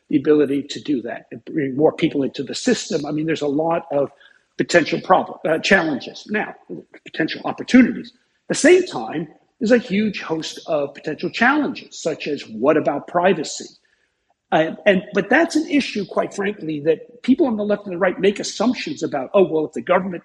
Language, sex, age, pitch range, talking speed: English, male, 50-69, 155-230 Hz, 195 wpm